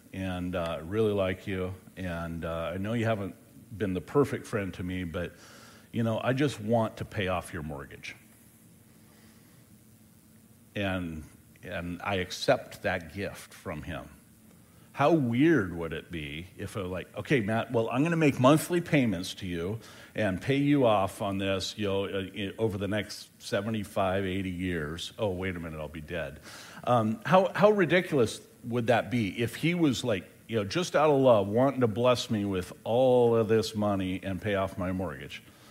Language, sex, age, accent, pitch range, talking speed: English, male, 50-69, American, 95-135 Hz, 185 wpm